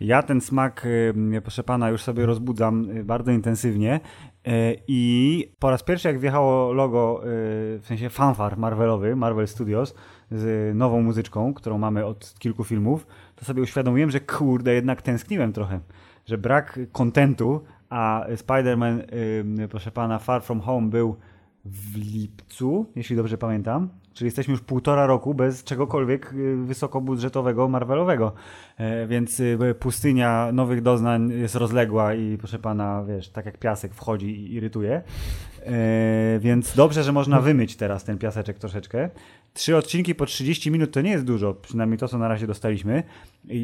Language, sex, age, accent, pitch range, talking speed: Polish, male, 20-39, native, 110-130 Hz, 145 wpm